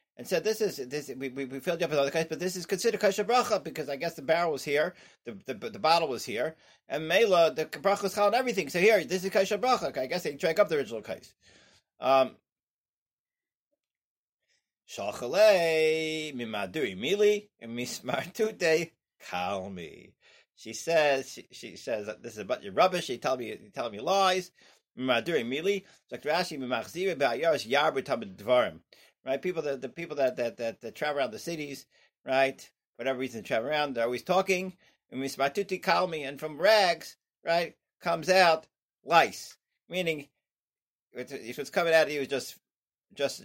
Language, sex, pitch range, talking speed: English, male, 135-190 Hz, 165 wpm